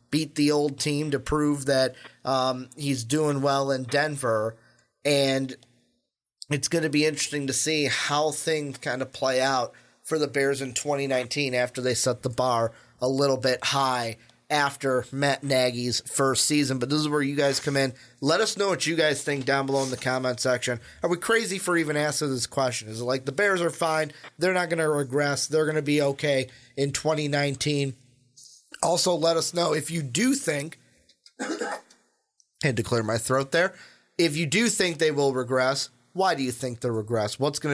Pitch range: 130-150 Hz